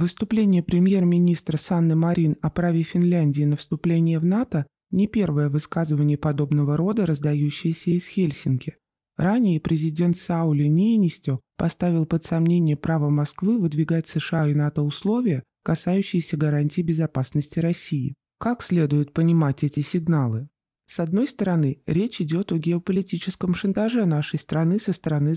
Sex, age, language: male, 20-39, Russian